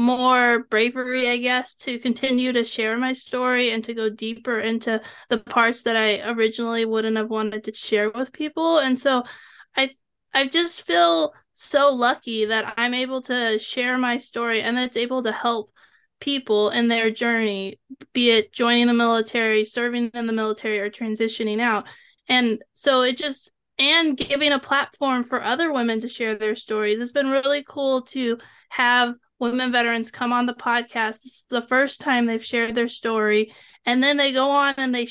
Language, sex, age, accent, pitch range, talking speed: English, female, 20-39, American, 225-260 Hz, 185 wpm